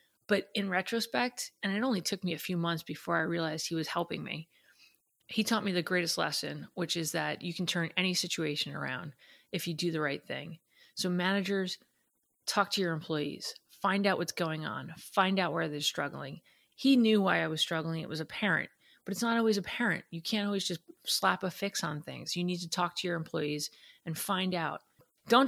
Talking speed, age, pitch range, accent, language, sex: 210 wpm, 30-49, 170-205 Hz, American, English, female